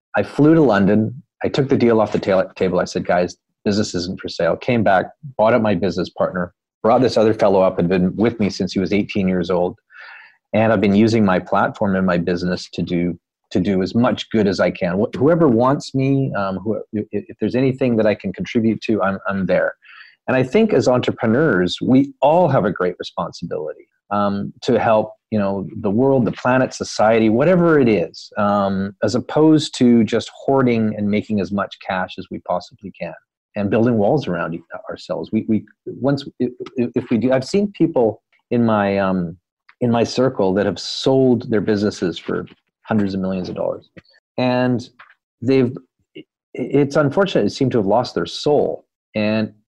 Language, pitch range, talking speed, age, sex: English, 100-130 Hz, 190 wpm, 30-49, male